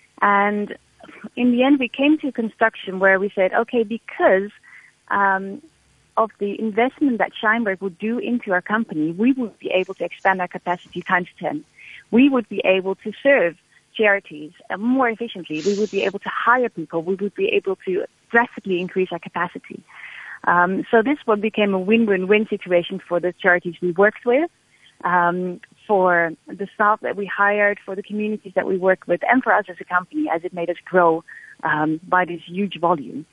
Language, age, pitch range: English, 30-49, 175-215 Hz